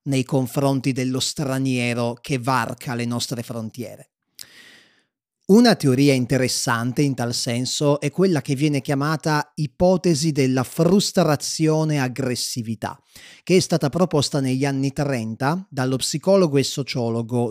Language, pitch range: Italian, 130-170 Hz